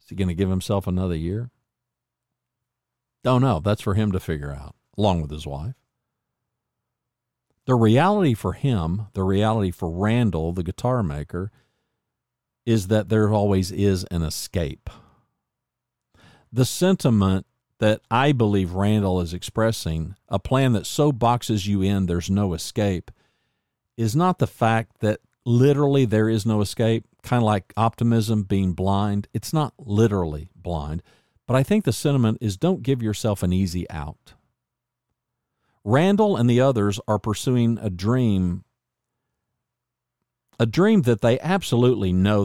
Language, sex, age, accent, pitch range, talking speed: English, male, 50-69, American, 95-120 Hz, 140 wpm